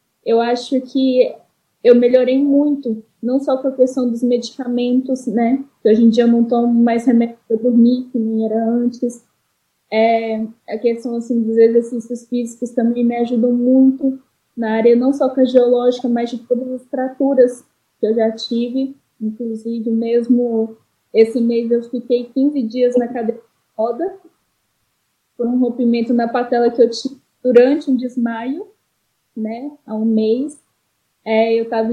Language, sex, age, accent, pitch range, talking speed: Portuguese, female, 10-29, Brazilian, 230-255 Hz, 160 wpm